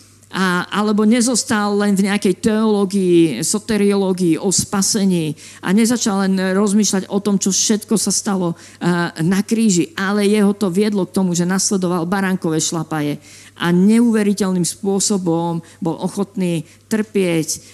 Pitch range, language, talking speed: 170-215 Hz, Slovak, 130 wpm